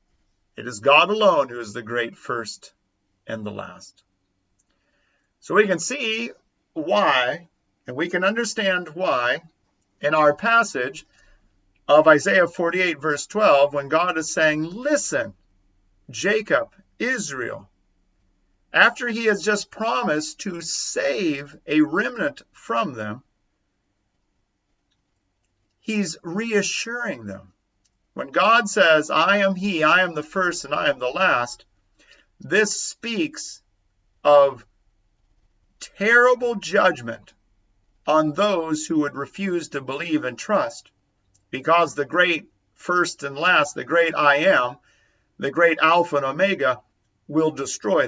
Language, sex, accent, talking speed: English, male, American, 120 wpm